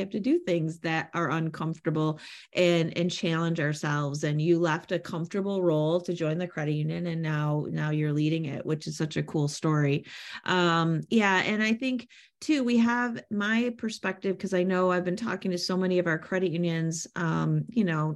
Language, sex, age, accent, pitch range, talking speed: English, female, 30-49, American, 155-190 Hz, 200 wpm